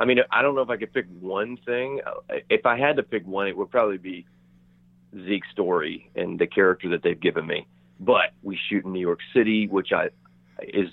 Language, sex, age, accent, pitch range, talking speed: English, male, 40-59, American, 90-110 Hz, 220 wpm